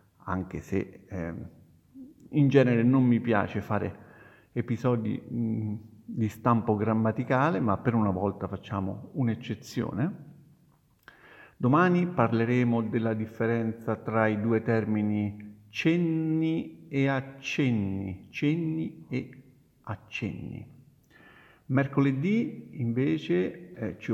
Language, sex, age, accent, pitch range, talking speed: Italian, male, 50-69, native, 105-130 Hz, 90 wpm